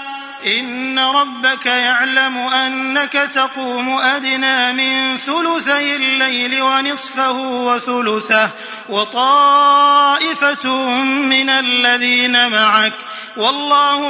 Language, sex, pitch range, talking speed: Arabic, male, 240-275 Hz, 70 wpm